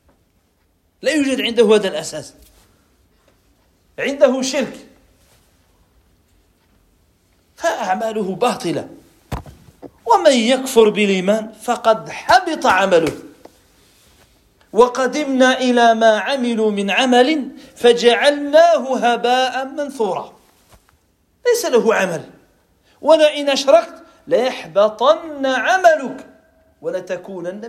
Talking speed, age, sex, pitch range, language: 70 wpm, 40-59, male, 170-280 Hz, English